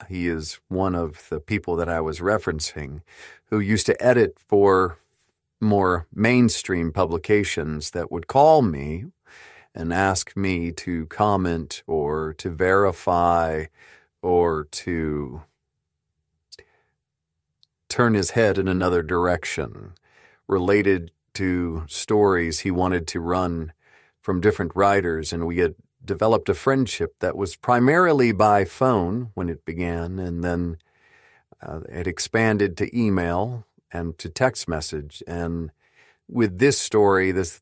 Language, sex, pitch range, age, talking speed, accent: English, male, 85-100 Hz, 40-59, 125 wpm, American